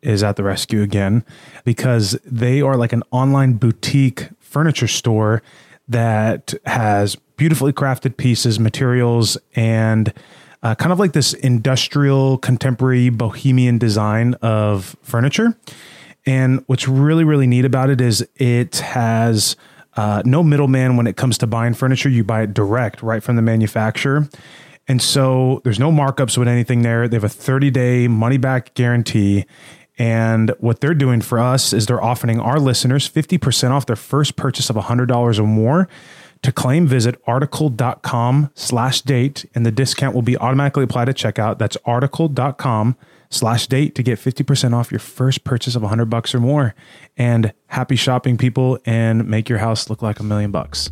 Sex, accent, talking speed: male, American, 165 wpm